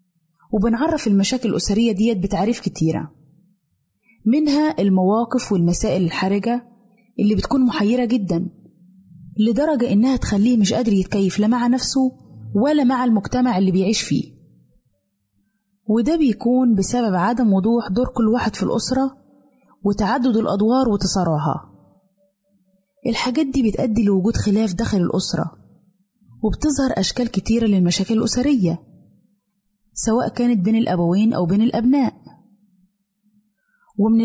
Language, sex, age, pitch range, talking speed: Arabic, female, 30-49, 190-240 Hz, 110 wpm